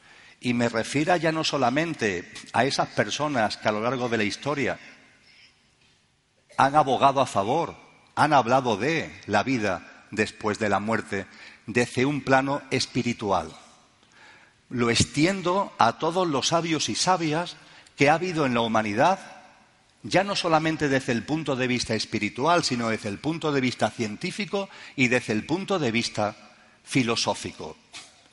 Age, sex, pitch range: 50-69, male, 115-155 Hz